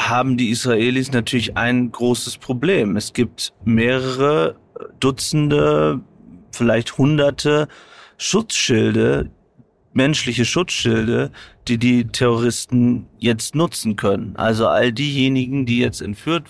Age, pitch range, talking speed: 30-49, 115-125 Hz, 100 wpm